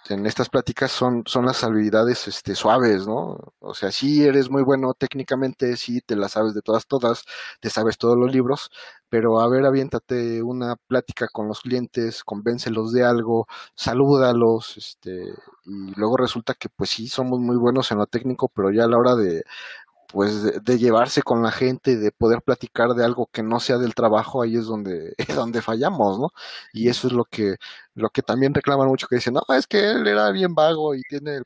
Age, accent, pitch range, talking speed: 30-49, Mexican, 110-125 Hz, 205 wpm